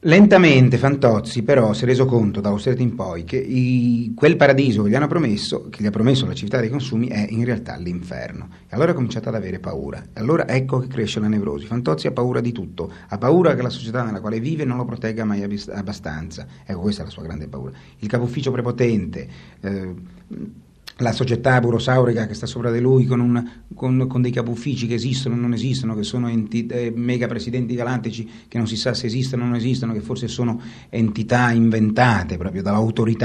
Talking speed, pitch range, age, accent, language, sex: 205 wpm, 110-130 Hz, 40-59, native, Italian, male